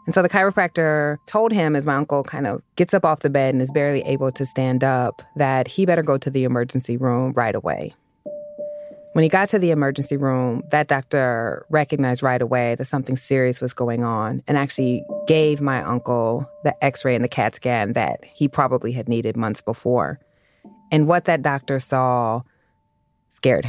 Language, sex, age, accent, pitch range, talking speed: English, female, 30-49, American, 130-170 Hz, 190 wpm